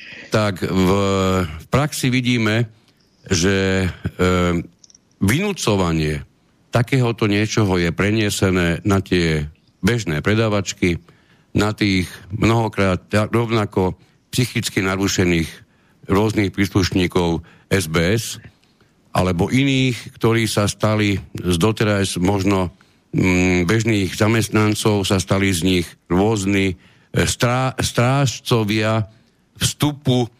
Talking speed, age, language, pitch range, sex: 90 wpm, 50-69, Slovak, 90-110 Hz, male